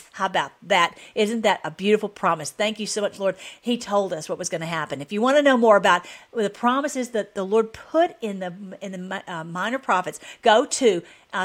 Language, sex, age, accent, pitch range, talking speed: English, female, 50-69, American, 195-270 Hz, 230 wpm